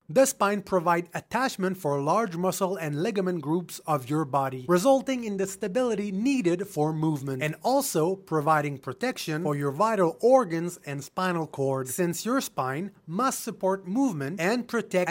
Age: 30-49